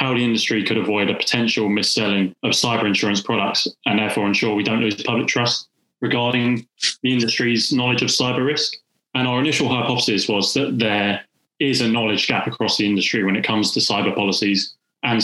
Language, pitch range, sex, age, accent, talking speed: English, 105-120 Hz, male, 20-39, British, 195 wpm